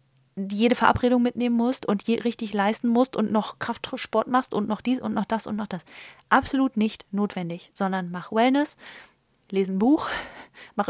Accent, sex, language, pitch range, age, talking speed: German, female, German, 190-230 Hz, 30-49, 175 wpm